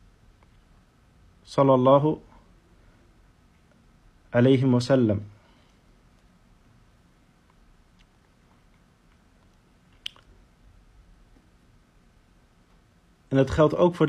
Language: Dutch